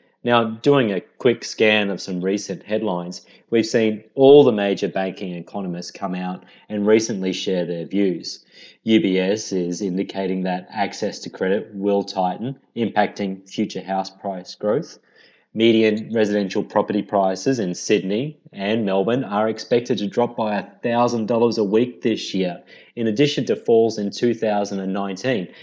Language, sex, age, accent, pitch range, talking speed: English, male, 30-49, Australian, 95-120 Hz, 145 wpm